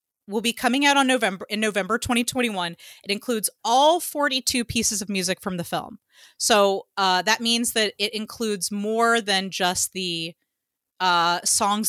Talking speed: 160 wpm